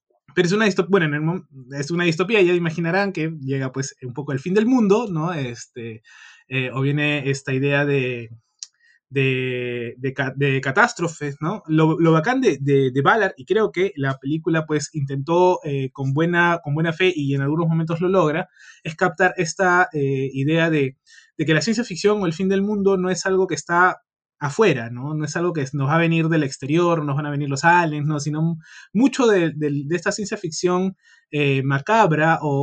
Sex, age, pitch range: male, 20-39, 140-180 Hz